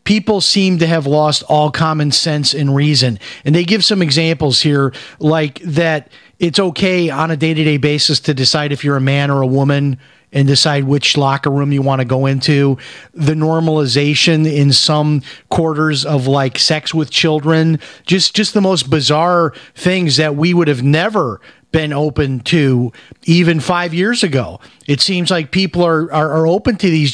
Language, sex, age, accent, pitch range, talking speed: English, male, 40-59, American, 145-170 Hz, 180 wpm